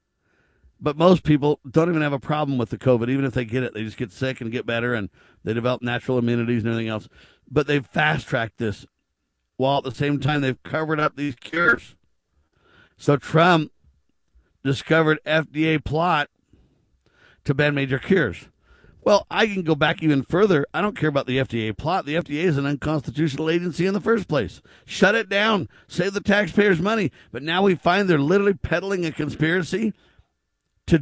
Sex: male